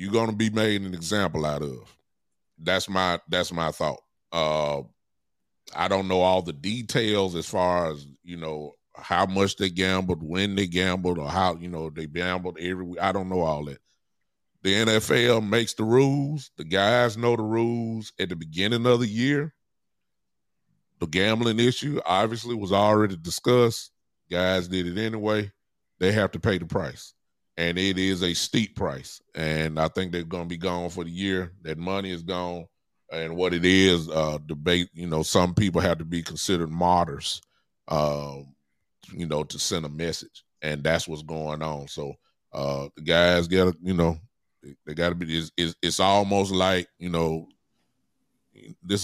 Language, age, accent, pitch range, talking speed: English, 30-49, American, 80-100 Hz, 180 wpm